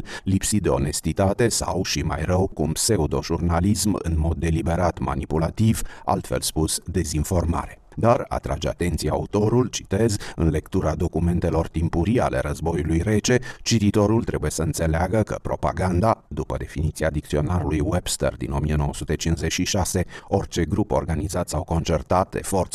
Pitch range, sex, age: 75-95 Hz, male, 40-59